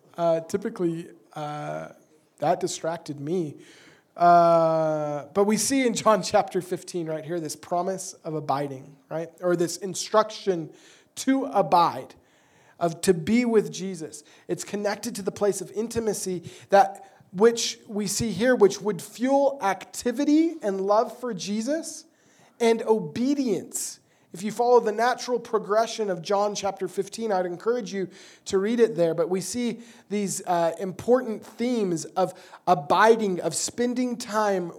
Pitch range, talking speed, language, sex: 175-225 Hz, 140 wpm, English, male